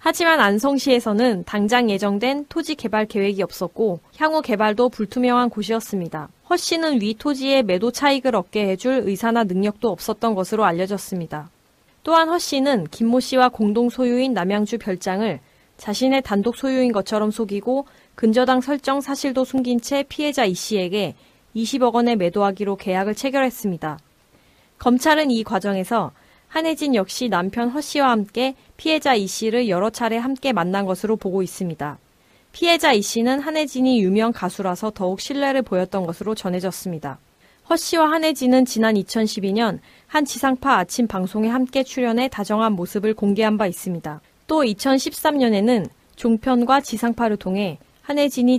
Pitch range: 200-260 Hz